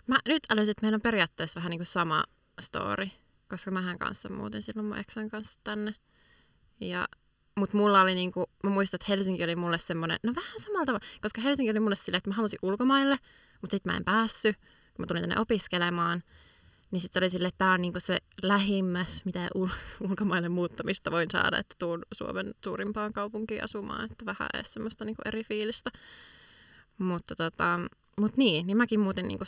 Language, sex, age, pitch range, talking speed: Finnish, female, 20-39, 180-215 Hz, 195 wpm